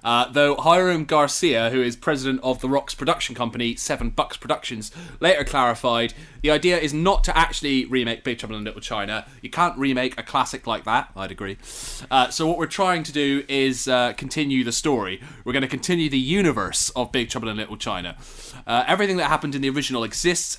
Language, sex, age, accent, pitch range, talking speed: English, male, 30-49, British, 120-155 Hz, 205 wpm